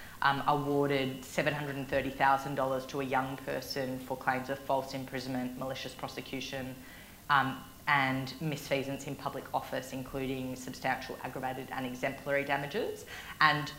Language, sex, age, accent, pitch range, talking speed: English, female, 30-49, Australian, 130-145 Hz, 115 wpm